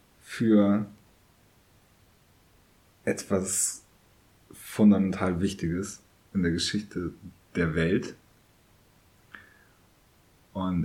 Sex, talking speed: male, 55 wpm